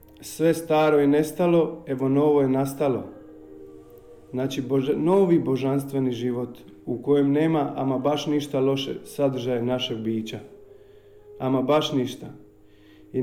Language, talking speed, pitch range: Croatian, 120 wpm, 125-160 Hz